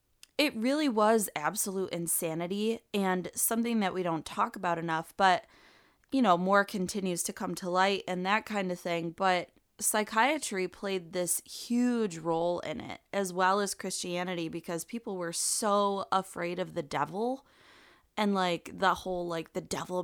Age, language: 20-39, English